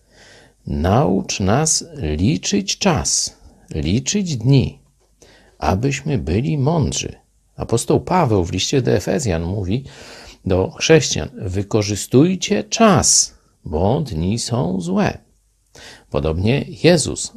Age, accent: 50-69, native